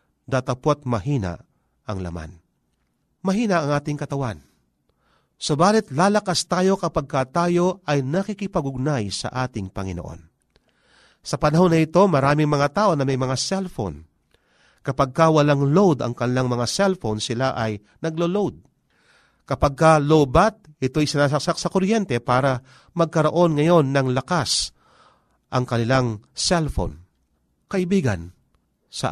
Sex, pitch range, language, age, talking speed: male, 115-175 Hz, Filipino, 40-59, 120 wpm